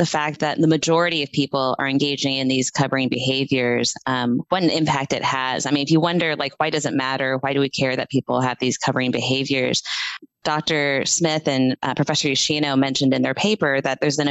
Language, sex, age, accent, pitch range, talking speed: English, female, 20-39, American, 135-155 Hz, 220 wpm